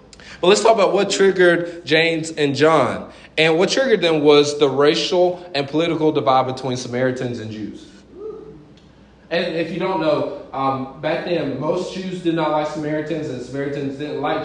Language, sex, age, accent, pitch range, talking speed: English, male, 30-49, American, 130-165 Hz, 170 wpm